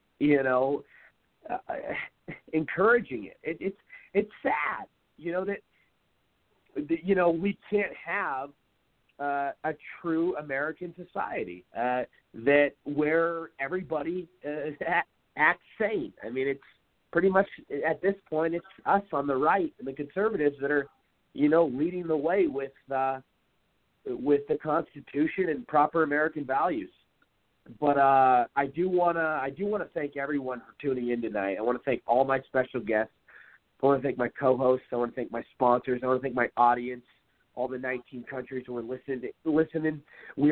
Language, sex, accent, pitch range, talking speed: English, male, American, 130-165 Hz, 160 wpm